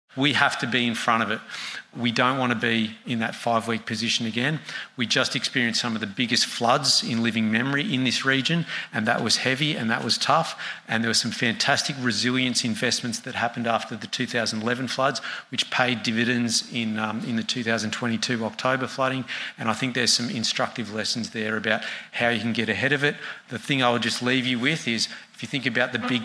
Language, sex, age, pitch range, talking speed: English, male, 40-59, 115-130 Hz, 215 wpm